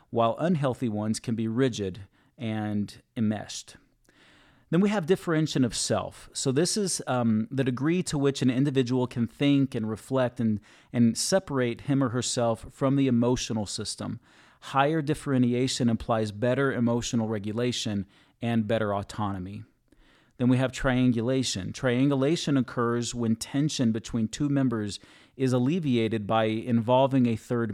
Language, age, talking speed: English, 30-49, 140 wpm